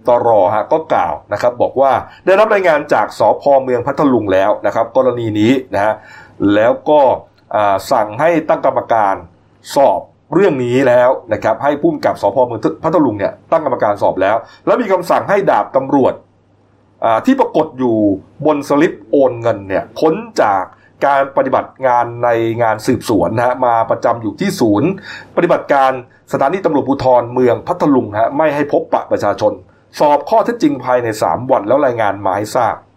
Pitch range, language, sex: 115-145 Hz, Thai, male